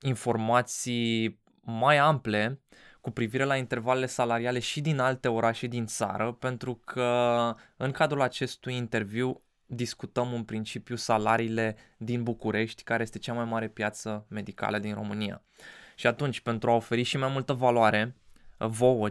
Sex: male